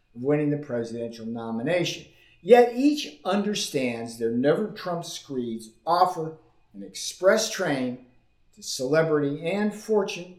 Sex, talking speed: male, 105 wpm